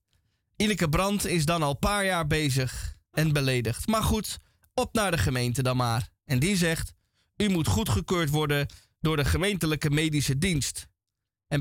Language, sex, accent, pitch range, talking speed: Dutch, male, Dutch, 120-185 Hz, 160 wpm